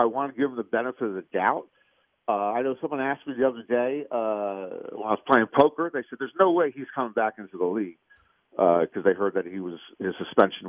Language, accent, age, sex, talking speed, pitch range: English, American, 50-69, male, 255 wpm, 115-155 Hz